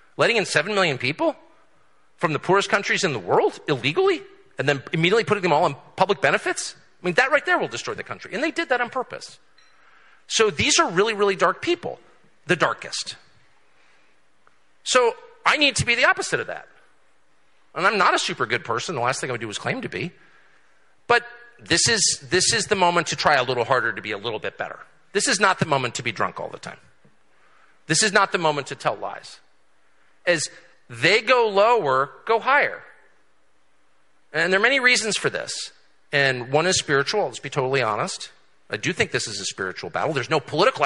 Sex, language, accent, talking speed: male, English, American, 205 wpm